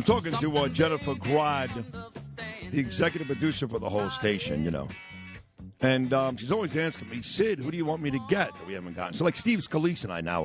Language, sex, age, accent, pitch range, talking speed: English, male, 60-79, American, 100-160 Hz, 230 wpm